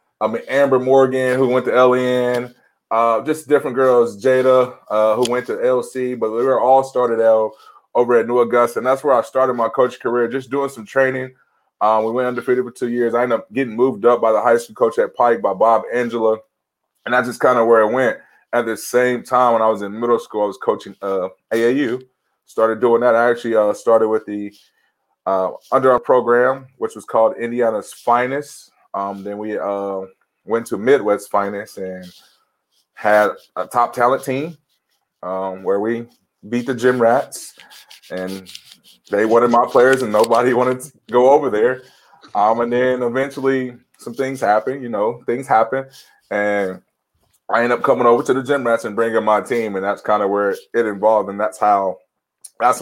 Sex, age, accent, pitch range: male, 20-39, American, 110-130 Hz